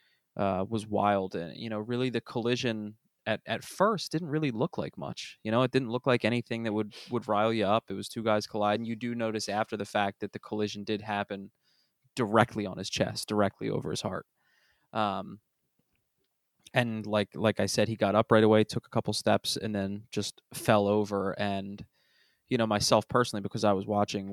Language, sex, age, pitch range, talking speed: English, male, 20-39, 100-110 Hz, 205 wpm